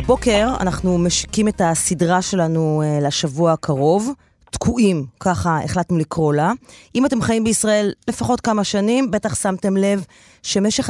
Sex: female